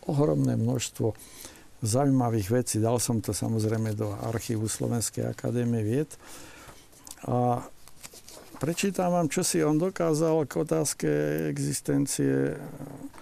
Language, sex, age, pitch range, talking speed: Slovak, male, 60-79, 115-145 Hz, 100 wpm